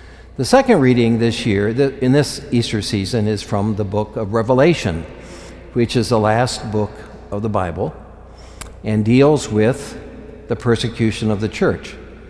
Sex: male